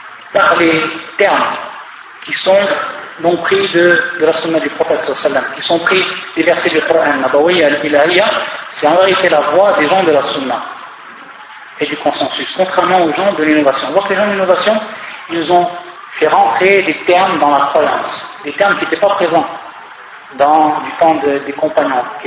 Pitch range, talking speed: 155-185 Hz, 180 wpm